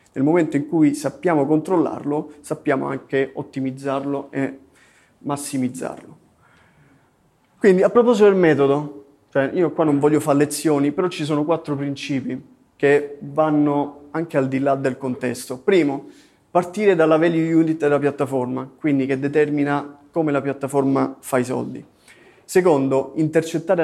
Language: Italian